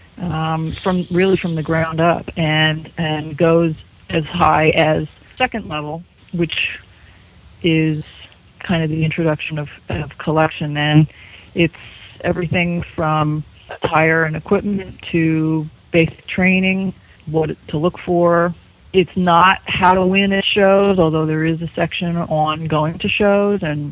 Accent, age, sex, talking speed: American, 40-59, female, 140 wpm